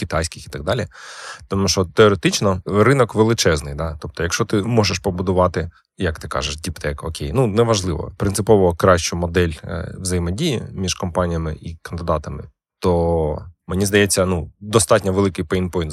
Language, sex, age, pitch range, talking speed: Ukrainian, male, 20-39, 85-105 Hz, 140 wpm